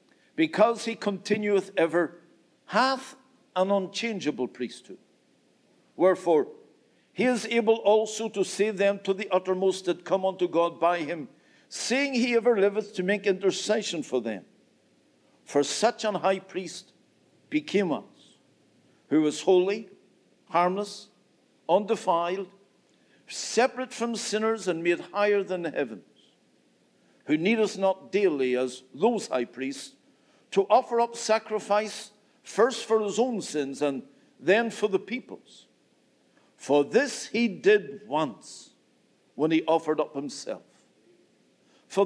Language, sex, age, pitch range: English, male, 60-79, 170-230 Hz